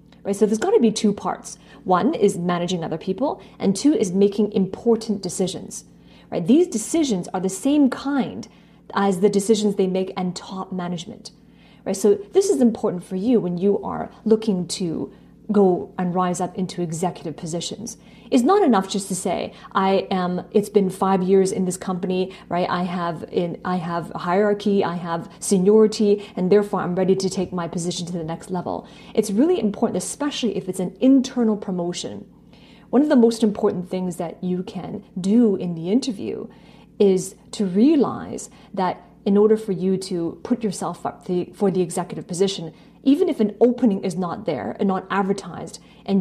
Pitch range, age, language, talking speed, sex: 180-220 Hz, 30-49, English, 180 wpm, female